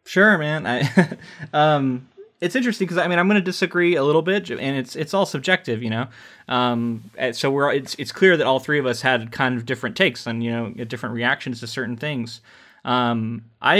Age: 20-39